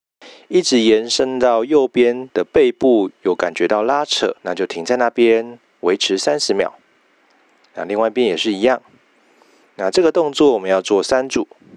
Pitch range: 110-160 Hz